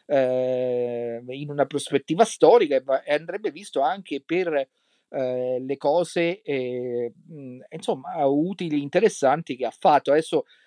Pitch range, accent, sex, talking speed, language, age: 130-165 Hz, native, male, 120 wpm, Italian, 40-59